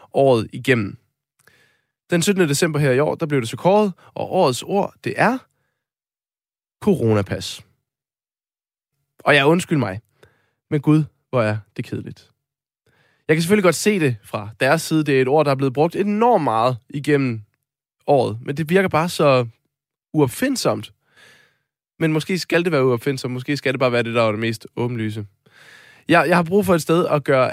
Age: 20-39